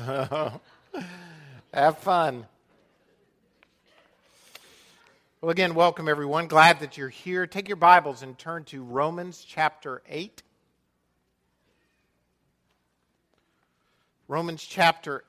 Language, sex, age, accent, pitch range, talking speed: English, male, 50-69, American, 125-175 Hz, 80 wpm